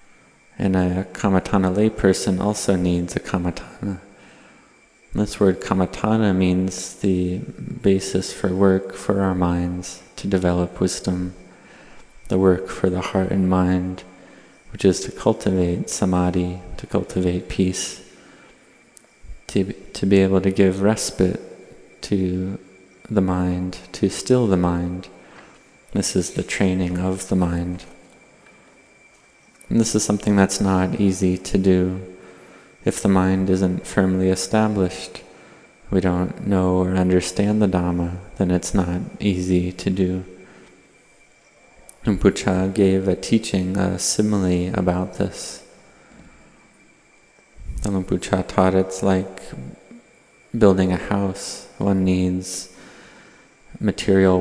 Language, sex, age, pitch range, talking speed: English, male, 30-49, 90-95 Hz, 115 wpm